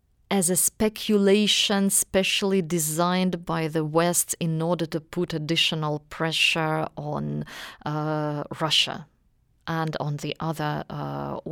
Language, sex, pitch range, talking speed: English, female, 160-190 Hz, 115 wpm